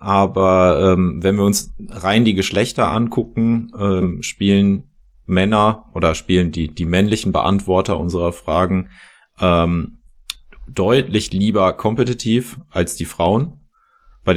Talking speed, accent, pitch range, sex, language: 115 wpm, German, 85-100 Hz, male, German